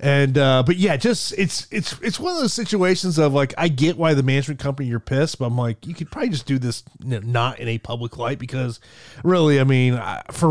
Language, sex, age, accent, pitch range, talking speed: English, male, 30-49, American, 120-160 Hz, 235 wpm